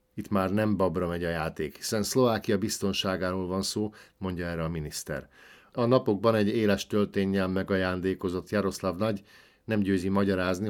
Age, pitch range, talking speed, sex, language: 50-69, 95-105 Hz, 150 wpm, male, Hungarian